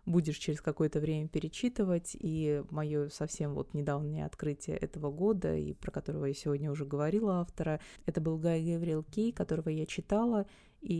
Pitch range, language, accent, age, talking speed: 150-175 Hz, Russian, native, 20-39, 165 wpm